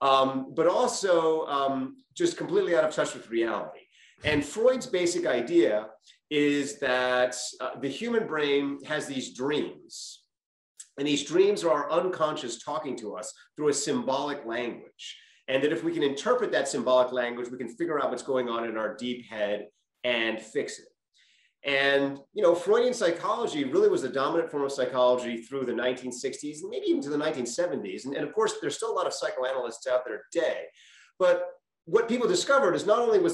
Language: English